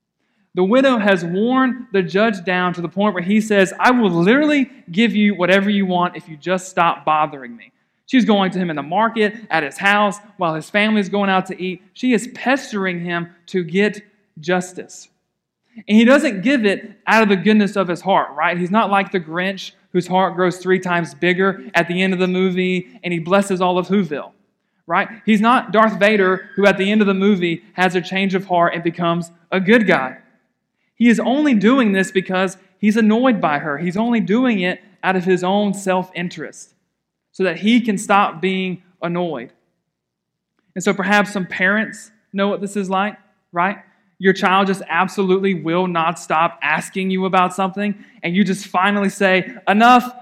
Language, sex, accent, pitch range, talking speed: English, male, American, 180-210 Hz, 195 wpm